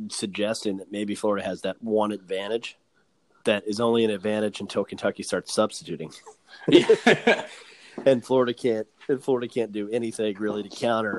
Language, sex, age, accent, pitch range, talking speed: English, male, 30-49, American, 95-115 Hz, 150 wpm